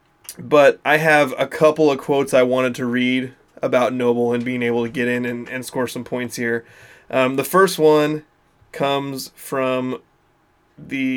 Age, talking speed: 20-39, 170 wpm